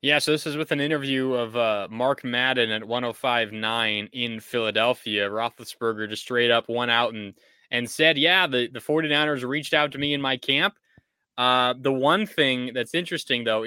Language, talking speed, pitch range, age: English, 185 wpm, 120-150 Hz, 20-39